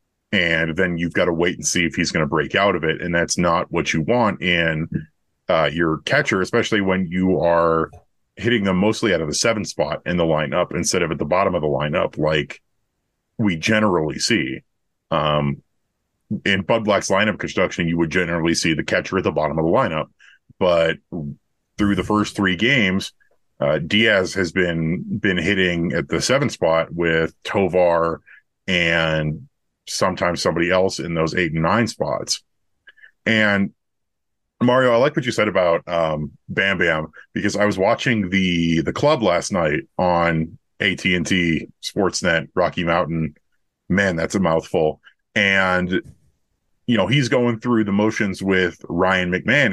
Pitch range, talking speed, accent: 80-100 Hz, 170 wpm, American